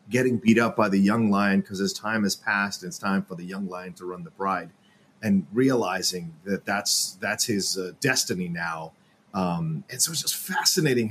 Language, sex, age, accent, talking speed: English, male, 30-49, American, 200 wpm